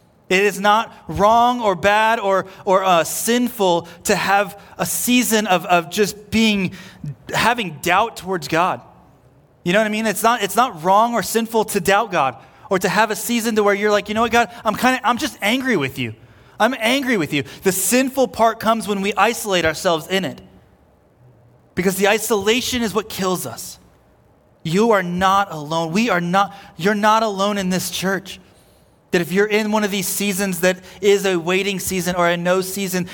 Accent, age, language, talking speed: American, 30-49, English, 195 wpm